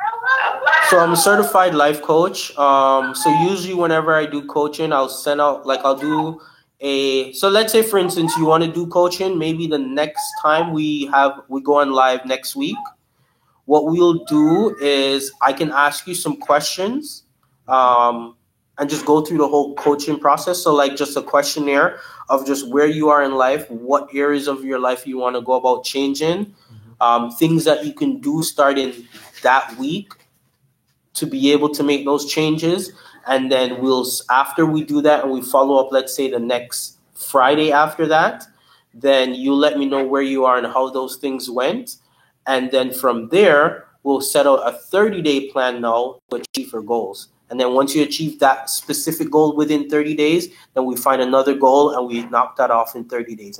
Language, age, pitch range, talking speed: English, 20-39, 130-155 Hz, 190 wpm